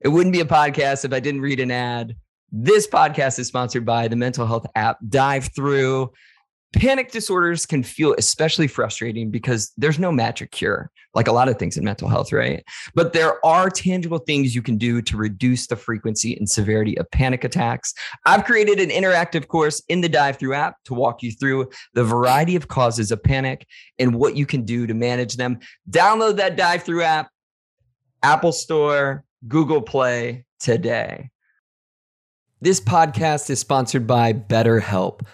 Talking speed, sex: 175 wpm, male